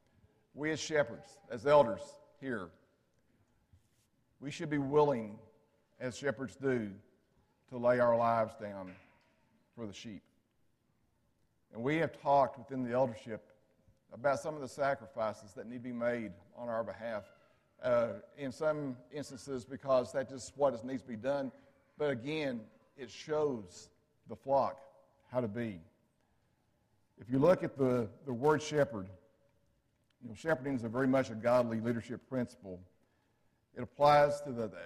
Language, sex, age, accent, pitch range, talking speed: English, male, 50-69, American, 115-140 Hz, 145 wpm